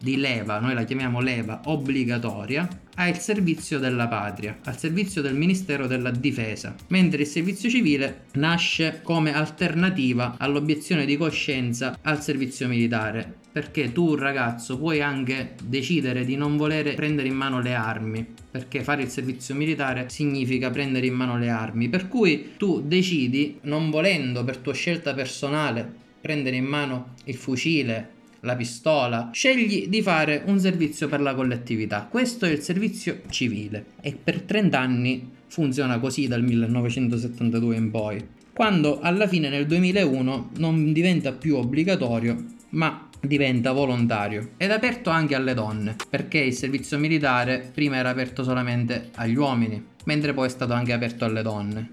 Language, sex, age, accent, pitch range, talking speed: Italian, male, 20-39, native, 120-155 Hz, 150 wpm